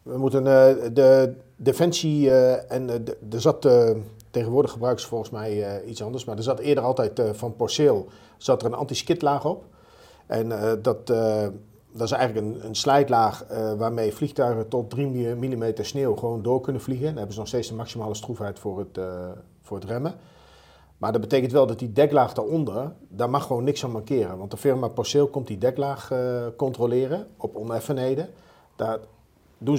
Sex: male